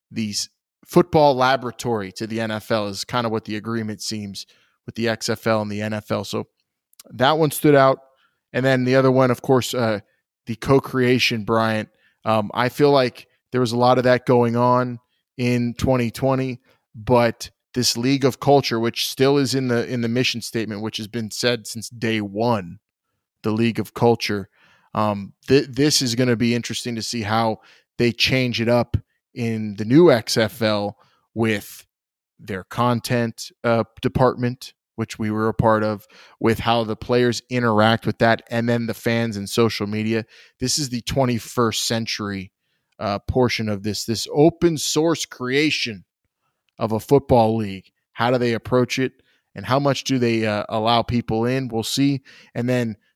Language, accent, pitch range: English, American, 110-125 Hz